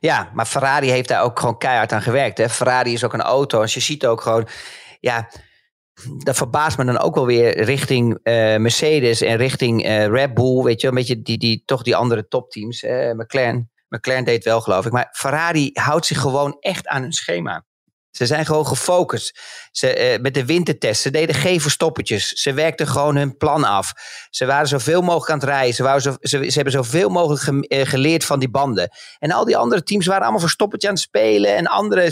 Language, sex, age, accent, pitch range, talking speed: Dutch, male, 40-59, Dutch, 125-170 Hz, 220 wpm